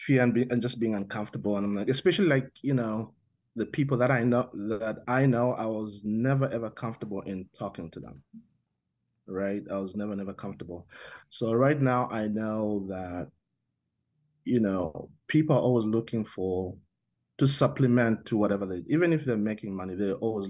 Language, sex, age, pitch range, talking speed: English, male, 20-39, 95-120 Hz, 180 wpm